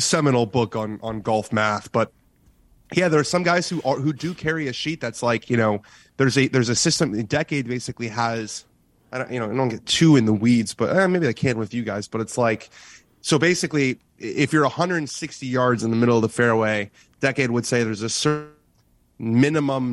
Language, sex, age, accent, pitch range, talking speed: English, male, 30-49, American, 110-135 Hz, 215 wpm